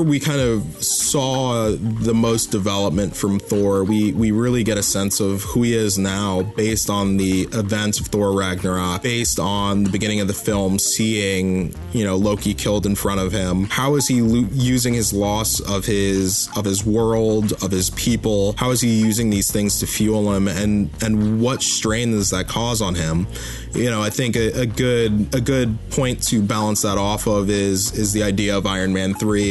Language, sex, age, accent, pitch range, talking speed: English, male, 20-39, American, 100-115 Hz, 200 wpm